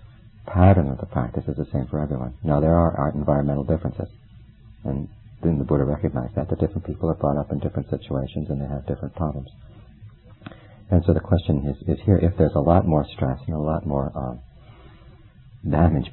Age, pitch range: 50-69, 70-105 Hz